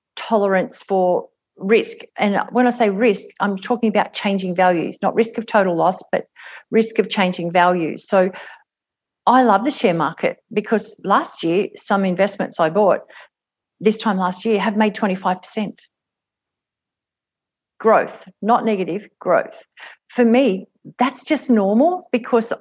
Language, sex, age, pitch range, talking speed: English, female, 50-69, 185-235 Hz, 140 wpm